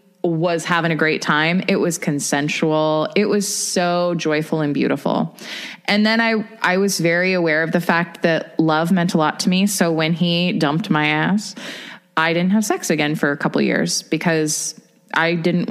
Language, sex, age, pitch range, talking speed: English, female, 20-39, 170-215 Hz, 190 wpm